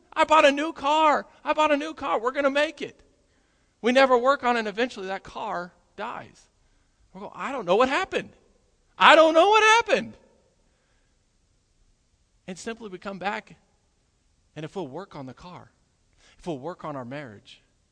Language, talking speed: English, 185 wpm